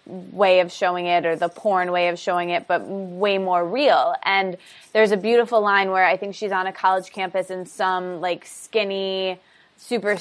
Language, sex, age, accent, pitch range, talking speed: English, female, 20-39, American, 175-210 Hz, 195 wpm